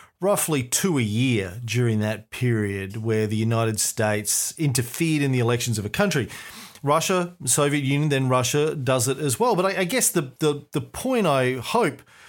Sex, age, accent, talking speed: male, 40-59, Australian, 180 wpm